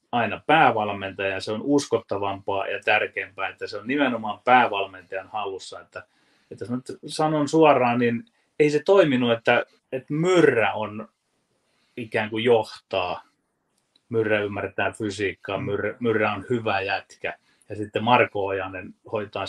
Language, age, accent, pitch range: Finnish, 30-49, native, 105-155 Hz